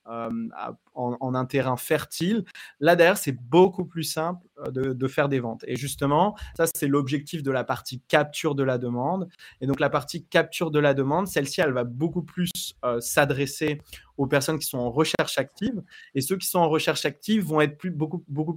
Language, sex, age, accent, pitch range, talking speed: French, male, 20-39, French, 135-165 Hz, 205 wpm